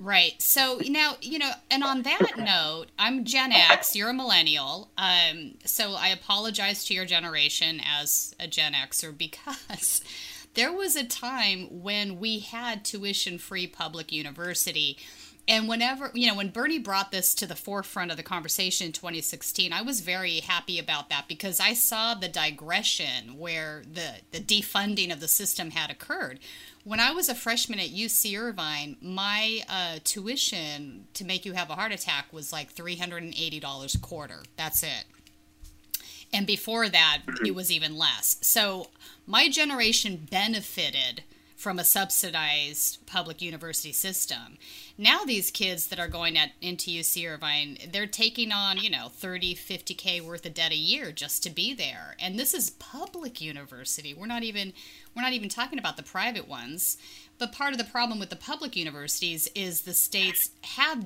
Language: English